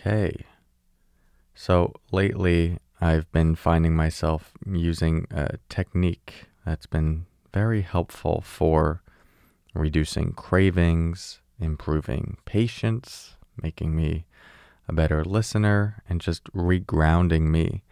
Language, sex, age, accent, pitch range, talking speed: English, male, 30-49, American, 80-95 Hz, 95 wpm